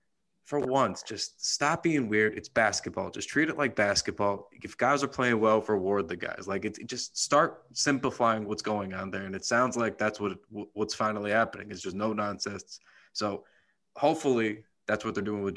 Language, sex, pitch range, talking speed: English, male, 100-115 Hz, 195 wpm